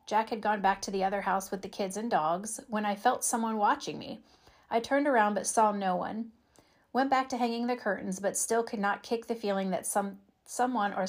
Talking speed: 235 wpm